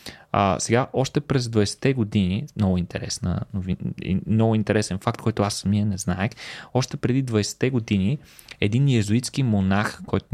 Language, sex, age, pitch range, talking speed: Bulgarian, male, 20-39, 105-140 Hz, 140 wpm